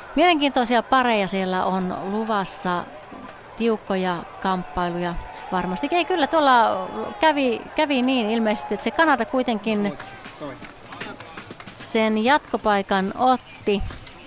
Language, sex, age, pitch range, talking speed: Finnish, female, 30-49, 190-255 Hz, 90 wpm